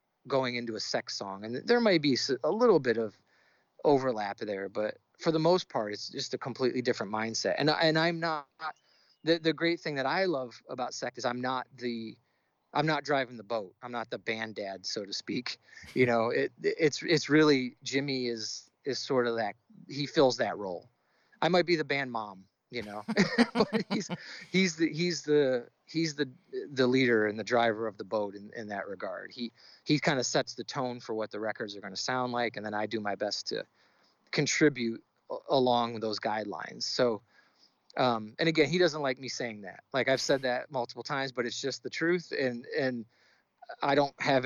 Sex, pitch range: male, 115-155 Hz